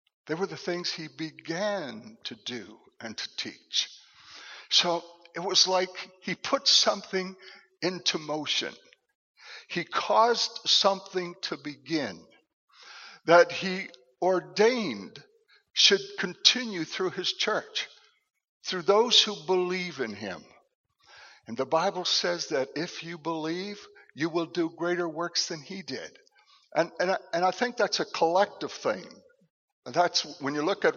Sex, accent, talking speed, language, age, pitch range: male, American, 140 wpm, English, 60-79, 155-225 Hz